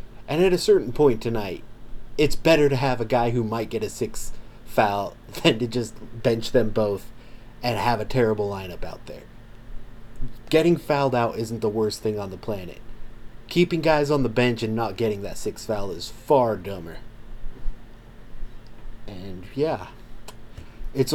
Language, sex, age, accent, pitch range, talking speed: English, male, 30-49, American, 115-125 Hz, 165 wpm